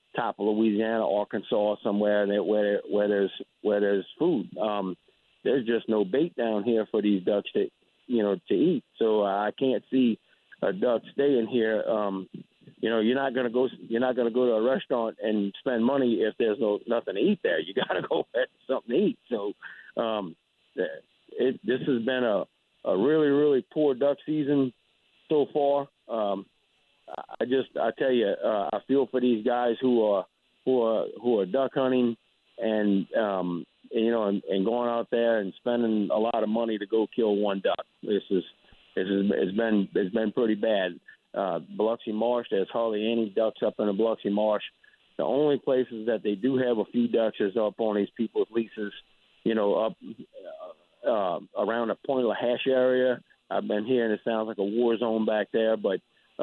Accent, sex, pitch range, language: American, male, 105-125 Hz, English